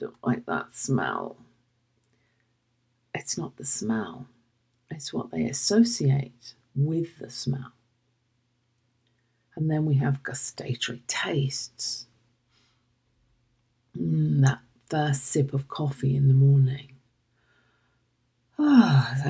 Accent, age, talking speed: British, 50-69, 95 wpm